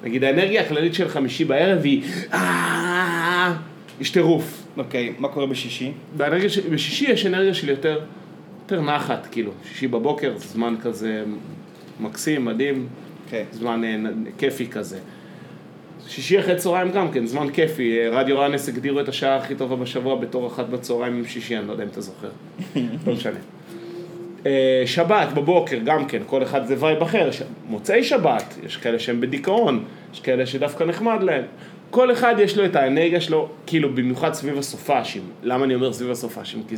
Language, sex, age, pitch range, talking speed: Hebrew, male, 30-49, 125-185 Hz, 75 wpm